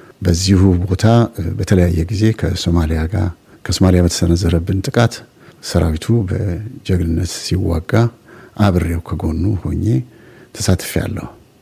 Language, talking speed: Amharic, 85 wpm